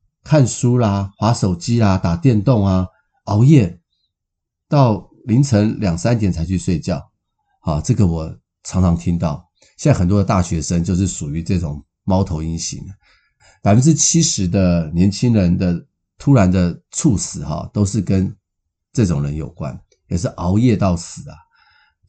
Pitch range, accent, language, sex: 85-110 Hz, native, Chinese, male